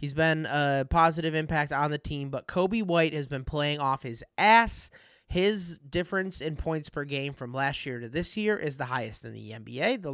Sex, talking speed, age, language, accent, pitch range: male, 215 wpm, 20-39, English, American, 135-175 Hz